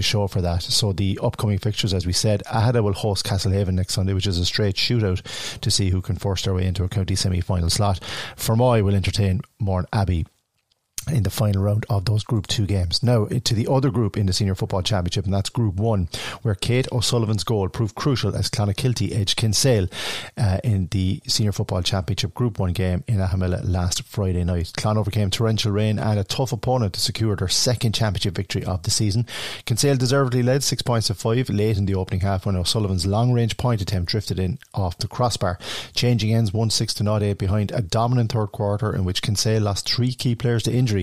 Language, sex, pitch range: English, male, 95-115 Hz